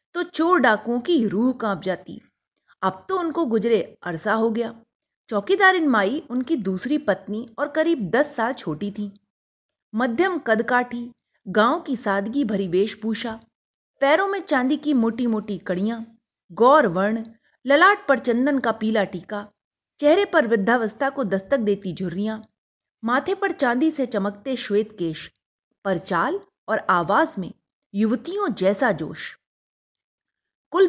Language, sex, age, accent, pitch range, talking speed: Hindi, female, 30-49, native, 200-285 Hz, 135 wpm